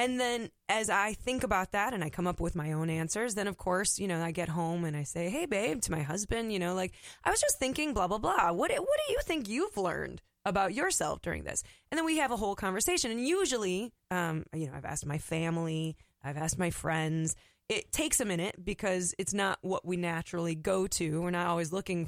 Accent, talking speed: American, 240 wpm